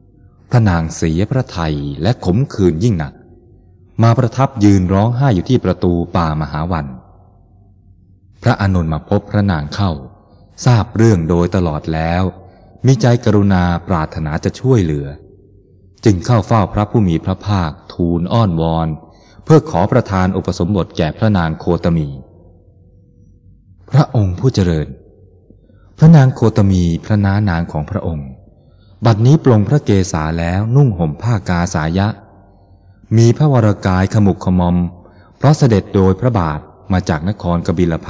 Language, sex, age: Thai, male, 20-39